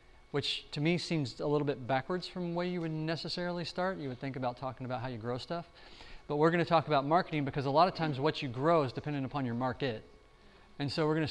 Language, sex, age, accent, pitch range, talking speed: English, male, 30-49, American, 125-155 Hz, 255 wpm